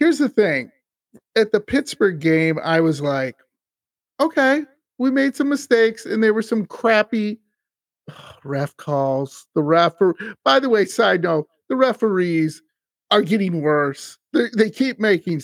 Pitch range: 145-225 Hz